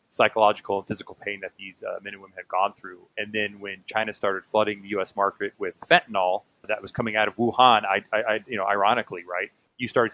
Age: 30-49